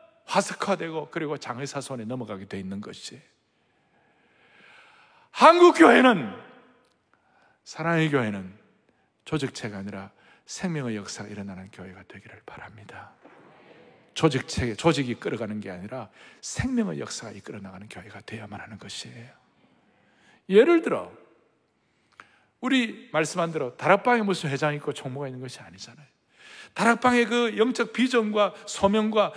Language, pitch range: Korean, 145-235 Hz